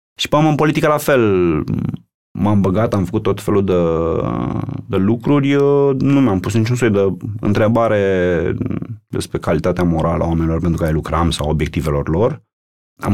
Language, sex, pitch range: Romanian, male, 80-105 Hz